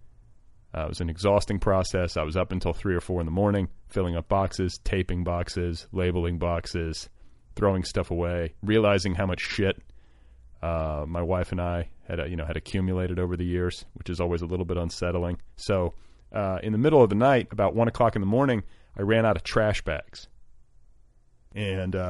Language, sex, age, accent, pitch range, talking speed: English, male, 30-49, American, 90-110 Hz, 195 wpm